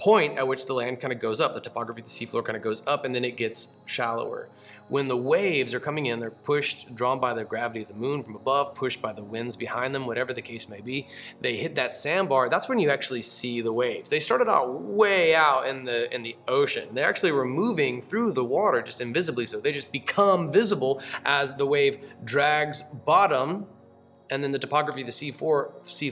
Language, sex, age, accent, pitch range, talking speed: English, male, 30-49, American, 120-150 Hz, 230 wpm